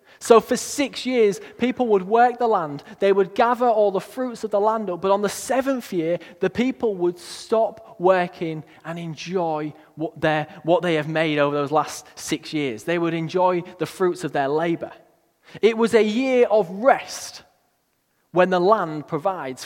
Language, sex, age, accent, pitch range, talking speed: English, male, 20-39, British, 170-230 Hz, 180 wpm